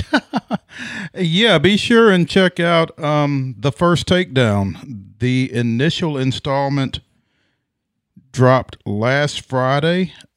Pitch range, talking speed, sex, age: 110-145 Hz, 95 wpm, male, 40-59